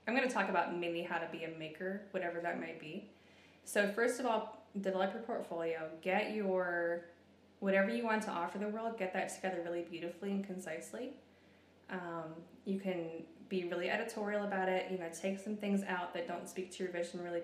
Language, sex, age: English, female, 20-39